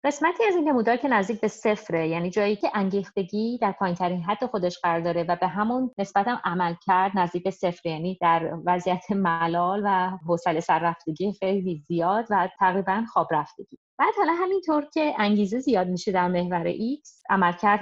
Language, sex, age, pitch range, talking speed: Persian, female, 30-49, 175-215 Hz, 175 wpm